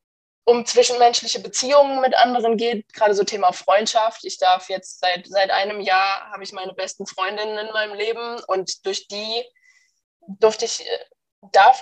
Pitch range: 195-245 Hz